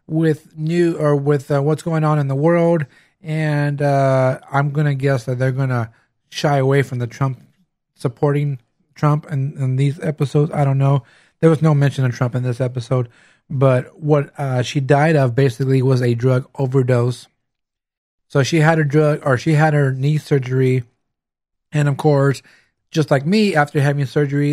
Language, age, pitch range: English, 30-49, 130-150 Hz